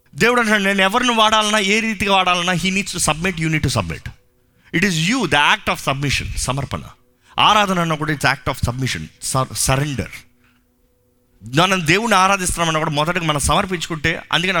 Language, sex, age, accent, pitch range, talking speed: Telugu, male, 30-49, native, 125-195 Hz, 170 wpm